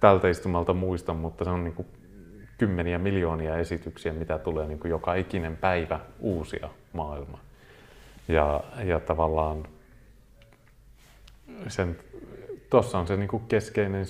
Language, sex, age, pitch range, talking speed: Finnish, male, 30-49, 85-110 Hz, 100 wpm